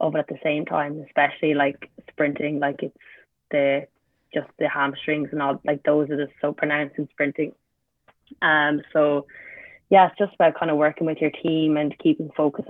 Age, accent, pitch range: 20-39, Irish, 145-155 Hz